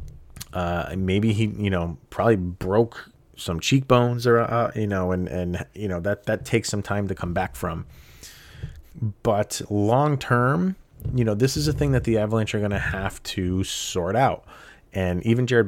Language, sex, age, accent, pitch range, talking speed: English, male, 30-49, American, 90-115 Hz, 185 wpm